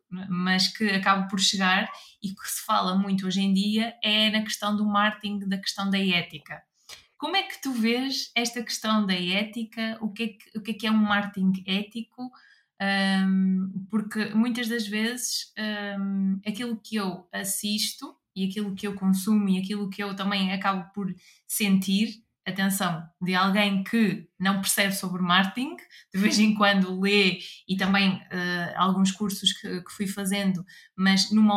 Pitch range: 190-225 Hz